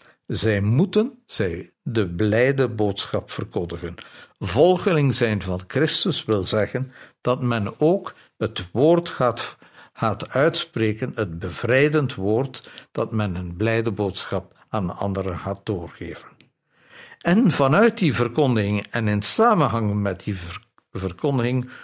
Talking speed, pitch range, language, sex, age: 120 wpm, 105-140 Hz, Dutch, male, 60-79